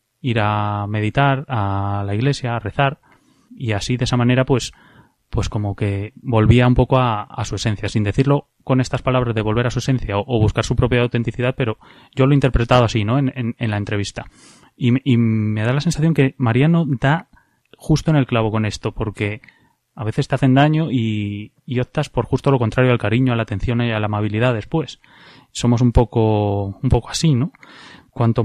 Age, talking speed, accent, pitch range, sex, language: 20-39, 205 wpm, Spanish, 115-140 Hz, male, Spanish